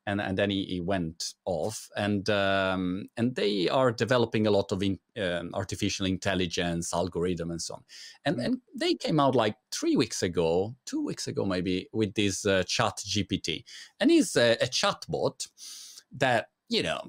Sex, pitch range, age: male, 95-130 Hz, 30-49